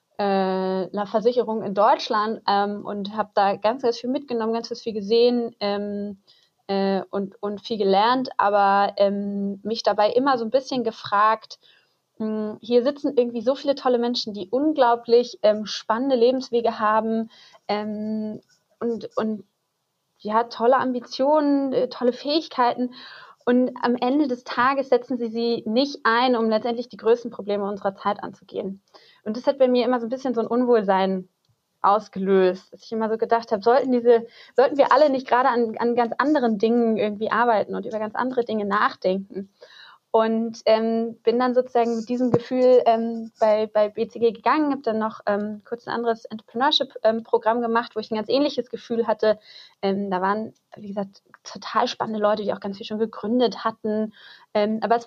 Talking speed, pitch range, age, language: 175 wpm, 210-245 Hz, 20-39, German